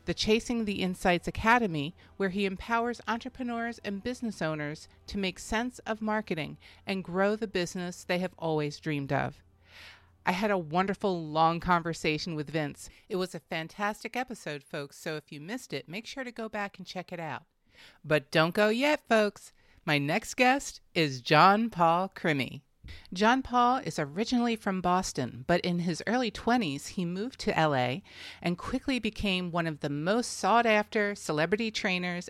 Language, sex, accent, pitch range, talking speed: English, female, American, 155-220 Hz, 170 wpm